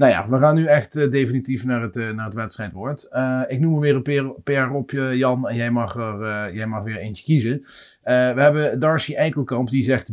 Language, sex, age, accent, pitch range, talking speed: Dutch, male, 40-59, Dutch, 115-140 Hz, 235 wpm